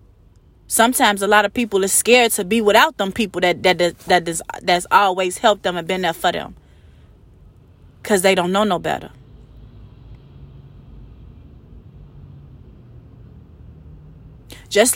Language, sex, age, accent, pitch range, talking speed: English, female, 20-39, American, 180-255 Hz, 130 wpm